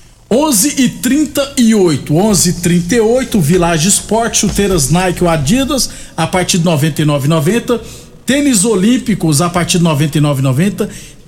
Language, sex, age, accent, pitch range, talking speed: Portuguese, male, 50-69, Brazilian, 175-220 Hz, 110 wpm